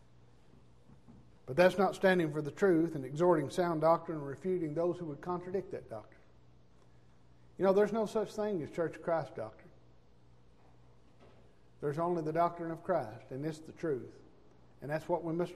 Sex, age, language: male, 60-79, English